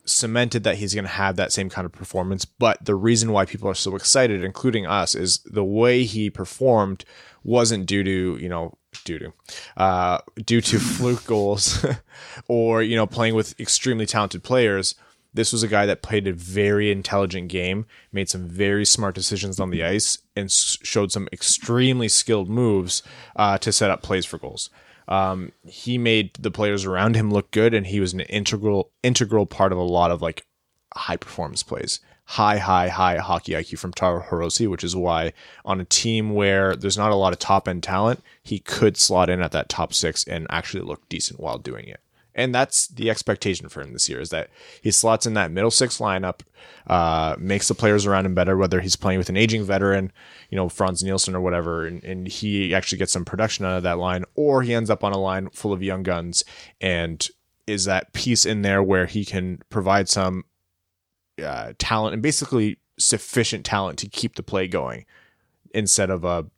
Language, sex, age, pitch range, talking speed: English, male, 20-39, 90-110 Hz, 200 wpm